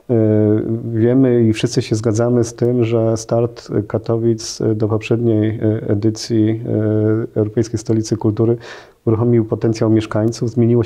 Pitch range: 115-130 Hz